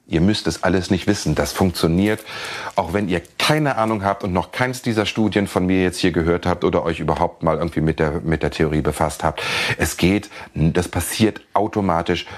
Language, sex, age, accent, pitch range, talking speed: German, male, 40-59, German, 85-115 Hz, 205 wpm